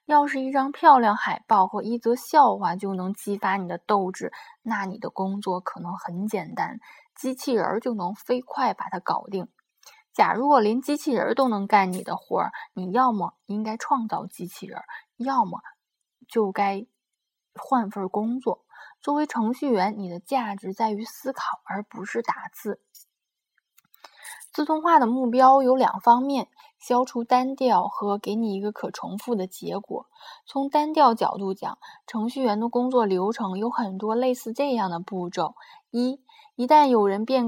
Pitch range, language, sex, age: 205-270 Hz, Chinese, female, 20-39